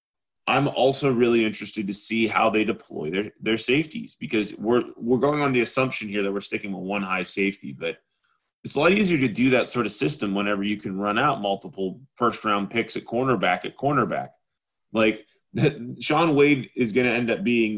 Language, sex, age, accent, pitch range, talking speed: English, male, 20-39, American, 100-125 Hz, 205 wpm